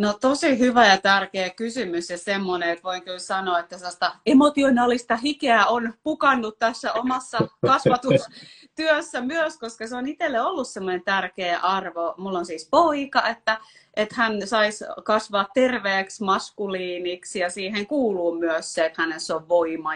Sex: female